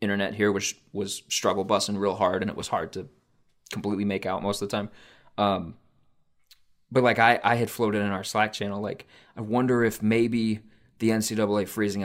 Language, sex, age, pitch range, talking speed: English, male, 20-39, 100-110 Hz, 195 wpm